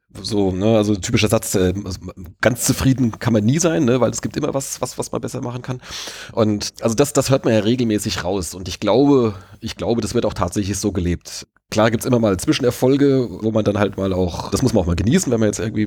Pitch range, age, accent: 105-130 Hz, 30-49, German